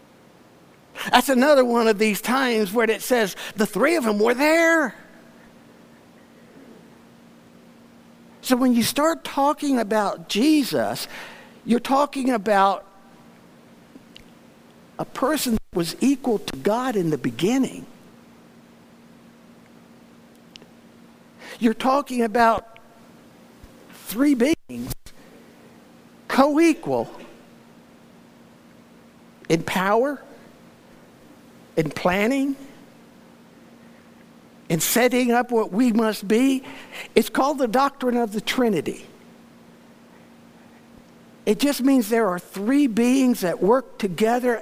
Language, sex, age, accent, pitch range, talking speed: English, male, 60-79, American, 195-260 Hz, 95 wpm